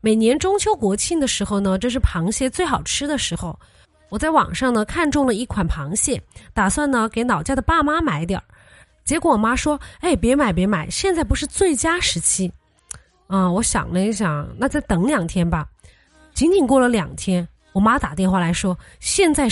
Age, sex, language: 20-39, female, Chinese